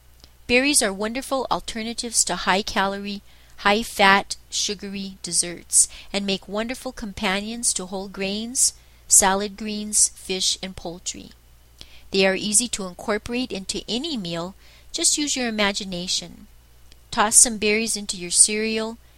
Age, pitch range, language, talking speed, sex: 40-59, 180-220 Hz, English, 120 wpm, female